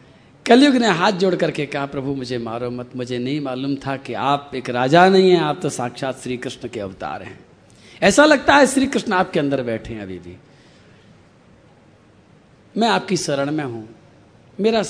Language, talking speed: Hindi, 180 wpm